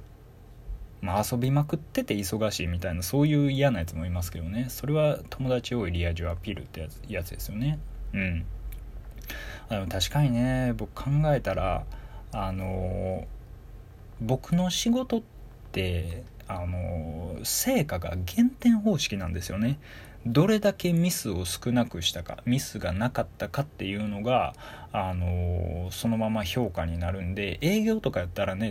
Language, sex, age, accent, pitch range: Japanese, male, 20-39, native, 90-125 Hz